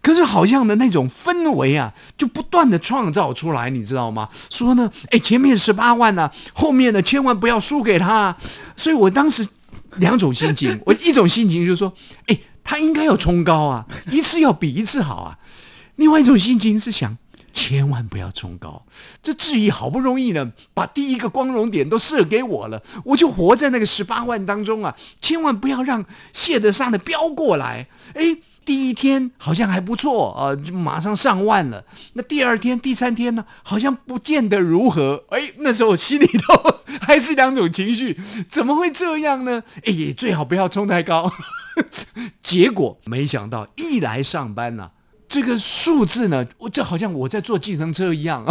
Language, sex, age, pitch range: Chinese, male, 50-69, 170-265 Hz